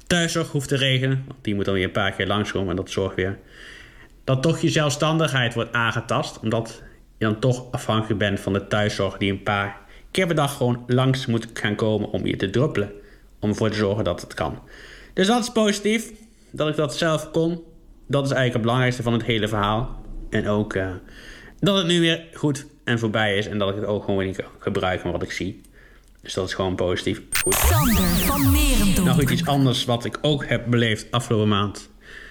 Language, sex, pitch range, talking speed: Dutch, male, 100-130 Hz, 205 wpm